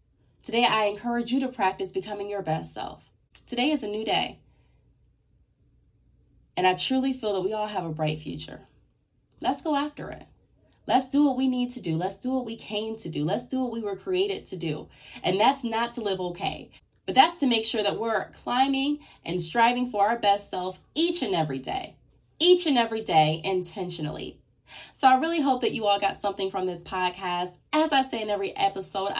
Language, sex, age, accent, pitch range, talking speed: English, female, 20-39, American, 175-255 Hz, 205 wpm